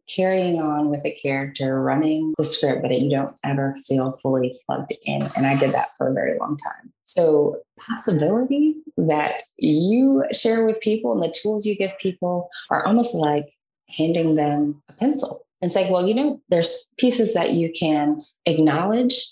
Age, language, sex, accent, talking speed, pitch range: 20-39, English, female, American, 180 wpm, 145-200 Hz